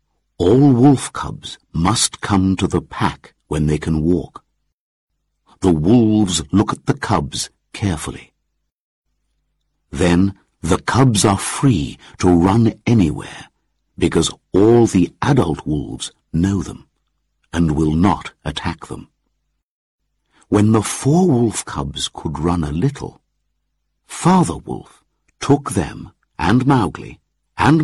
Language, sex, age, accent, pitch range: Chinese, male, 60-79, British, 85-130 Hz